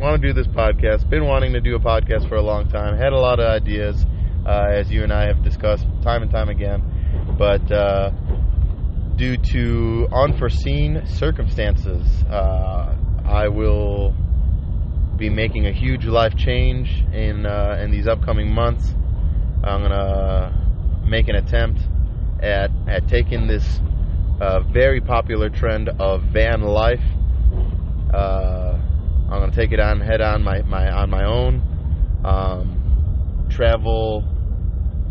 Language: English